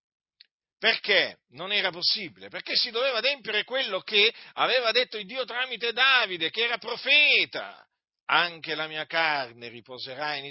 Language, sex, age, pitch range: Italian, male, 50-69, 165-245 Hz